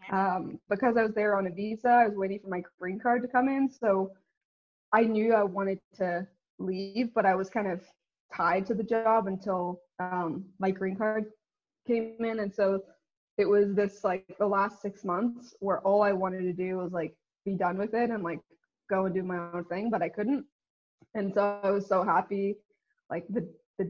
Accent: American